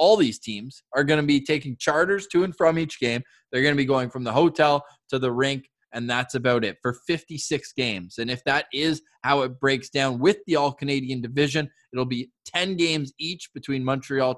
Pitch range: 130-170 Hz